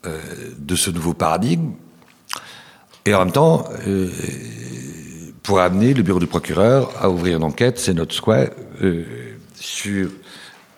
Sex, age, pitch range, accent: male, 60-79, 75-95 Hz, French